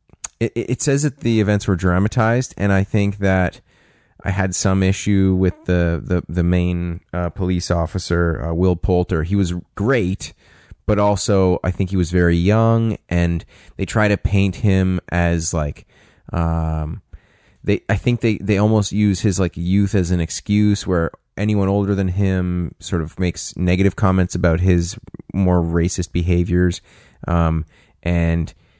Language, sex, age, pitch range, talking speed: English, male, 30-49, 85-100 Hz, 160 wpm